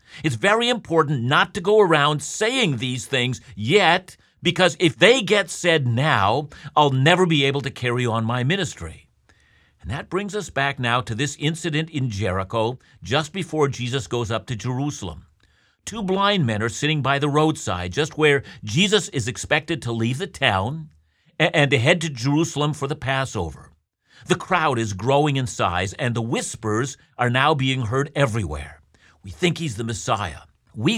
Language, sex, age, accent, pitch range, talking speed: English, male, 50-69, American, 115-160 Hz, 170 wpm